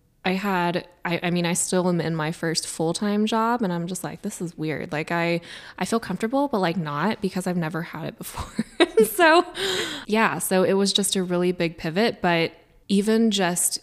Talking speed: 205 wpm